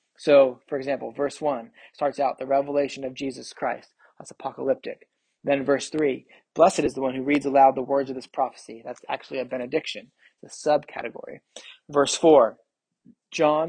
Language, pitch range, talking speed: English, 135-155 Hz, 165 wpm